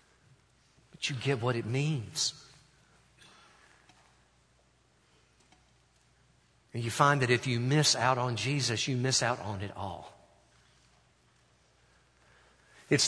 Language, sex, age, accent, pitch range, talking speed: English, male, 50-69, American, 110-140 Hz, 105 wpm